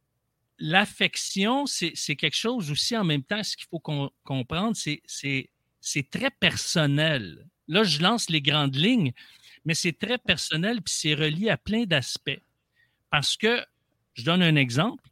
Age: 50-69